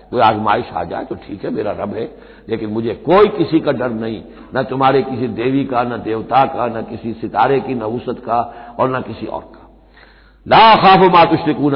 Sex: male